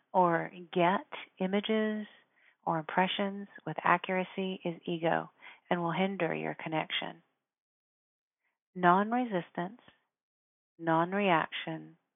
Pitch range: 165-190 Hz